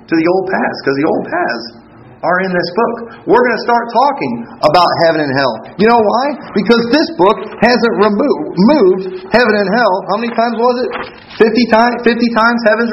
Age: 40-59